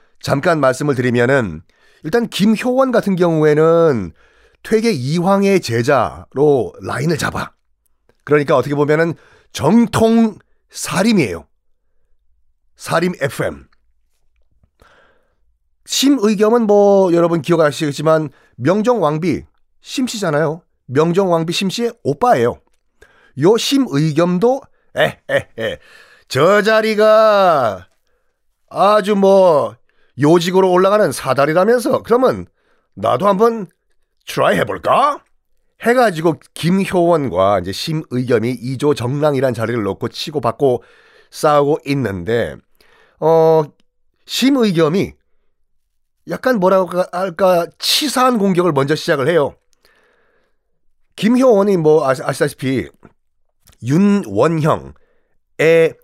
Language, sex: Korean, male